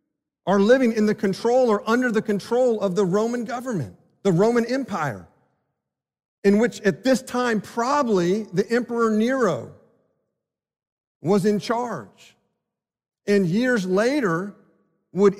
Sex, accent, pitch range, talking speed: male, American, 155-220 Hz, 125 wpm